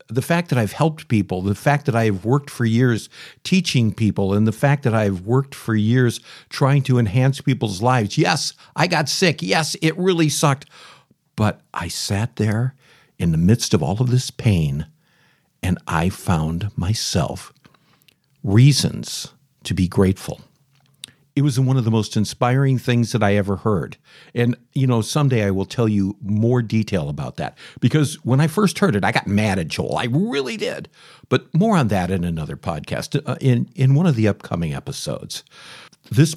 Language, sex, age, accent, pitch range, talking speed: English, male, 50-69, American, 105-140 Hz, 180 wpm